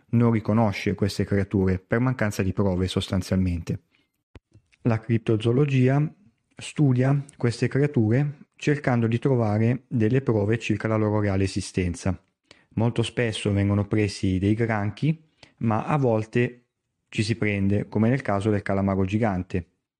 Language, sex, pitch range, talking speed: Italian, male, 95-115 Hz, 125 wpm